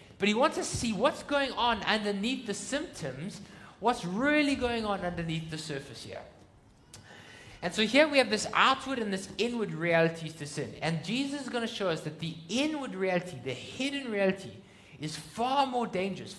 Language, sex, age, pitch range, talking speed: English, male, 30-49, 140-215 Hz, 180 wpm